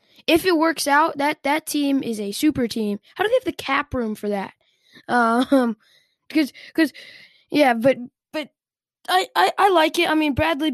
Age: 10-29